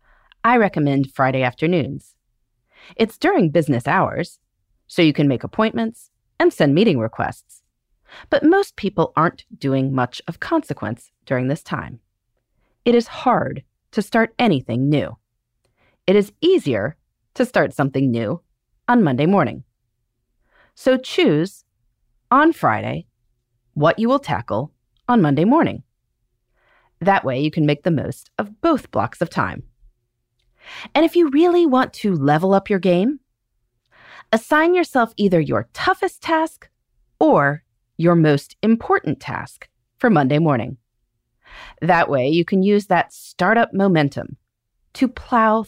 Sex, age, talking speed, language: female, 30-49, 135 wpm, English